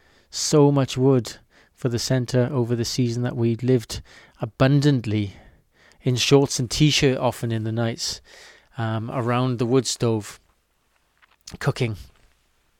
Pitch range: 115-135 Hz